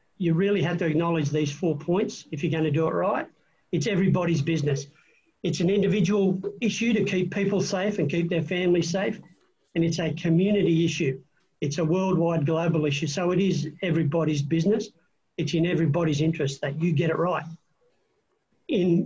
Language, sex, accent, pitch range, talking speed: English, male, Australian, 160-185 Hz, 175 wpm